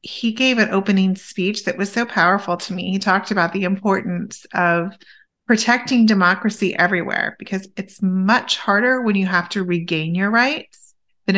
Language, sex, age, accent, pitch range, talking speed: English, female, 30-49, American, 175-210 Hz, 170 wpm